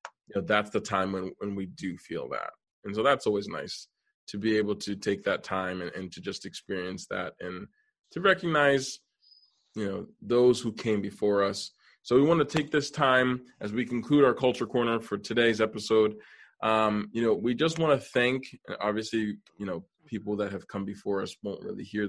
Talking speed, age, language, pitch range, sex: 205 wpm, 20-39, English, 100-125 Hz, male